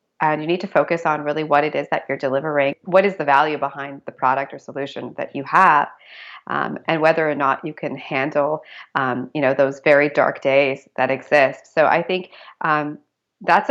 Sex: female